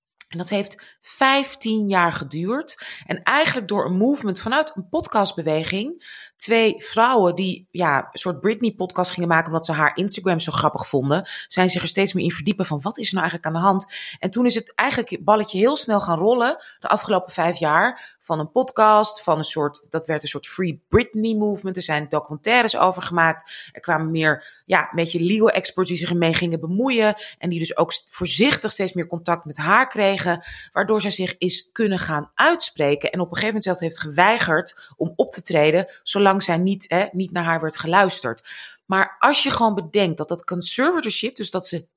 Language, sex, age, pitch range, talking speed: Dutch, female, 20-39, 165-220 Hz, 205 wpm